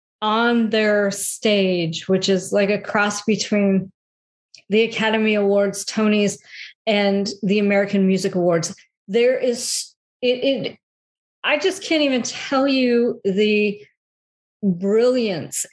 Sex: female